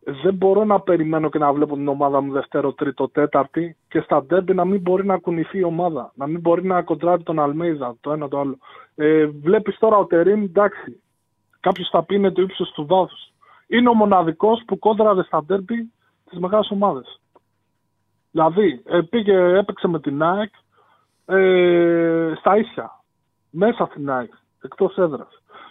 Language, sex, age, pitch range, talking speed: Greek, male, 20-39, 155-205 Hz, 165 wpm